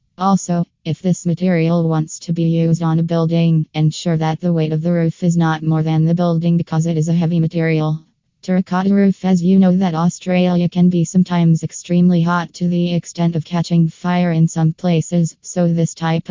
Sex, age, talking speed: female, 20-39, 200 wpm